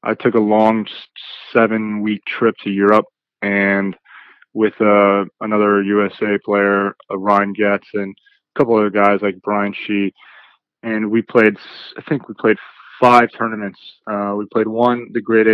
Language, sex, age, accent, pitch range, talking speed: English, male, 20-39, American, 100-110 Hz, 155 wpm